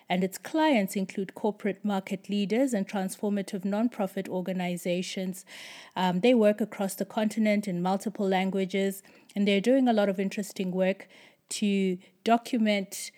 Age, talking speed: 30-49, 135 wpm